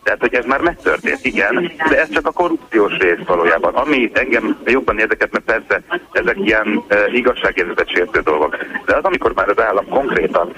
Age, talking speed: 30-49, 175 wpm